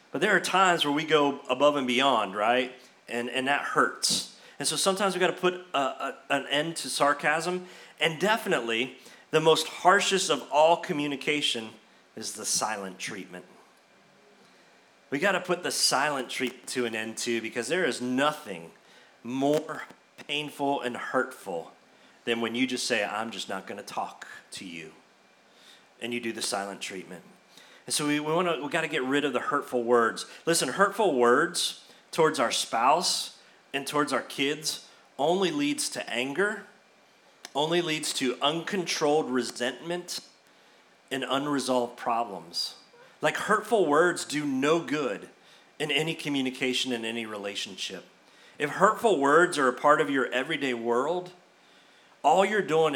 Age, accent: 30-49, American